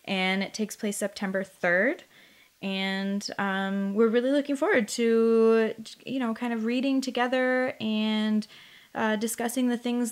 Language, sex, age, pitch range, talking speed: English, female, 20-39, 205-245 Hz, 140 wpm